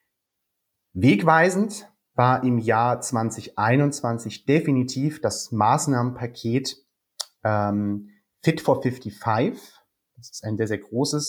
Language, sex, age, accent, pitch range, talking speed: German, male, 30-49, German, 110-140 Hz, 95 wpm